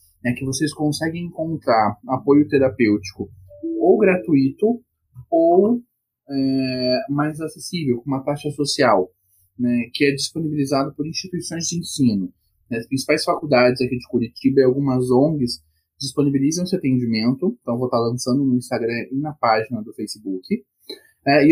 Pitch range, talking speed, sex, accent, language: 125-150 Hz, 140 wpm, male, Brazilian, Portuguese